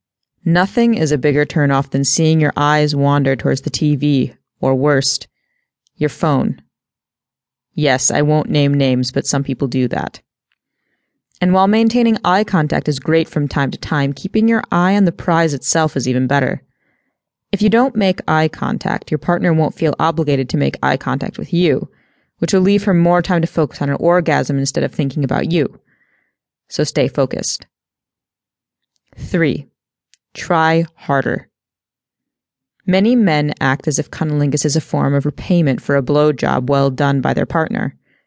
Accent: American